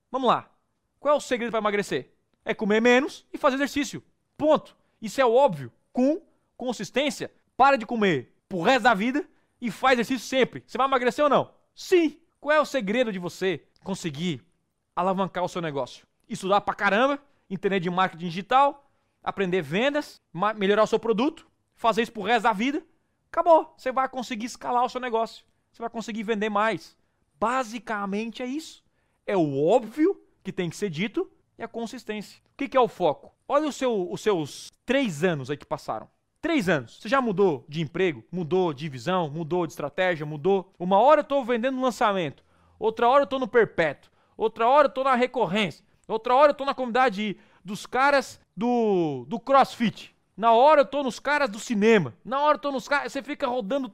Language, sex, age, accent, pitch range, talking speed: Portuguese, male, 20-39, Brazilian, 195-275 Hz, 190 wpm